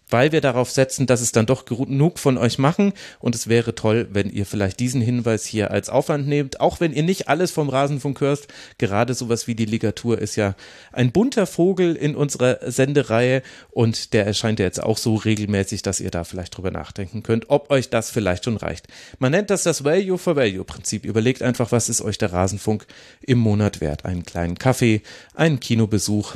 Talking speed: 200 wpm